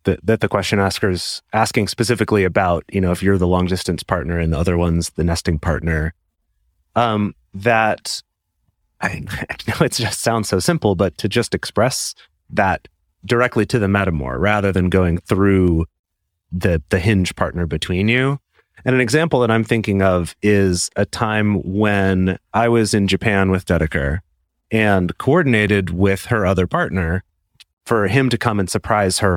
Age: 30-49